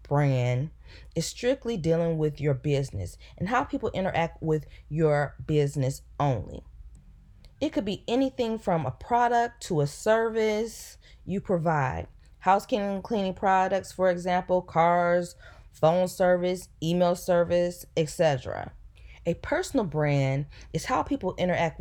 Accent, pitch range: American, 145-195 Hz